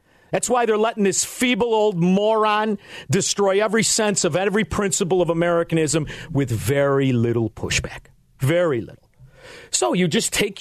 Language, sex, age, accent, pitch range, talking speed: English, male, 40-59, American, 155-240 Hz, 145 wpm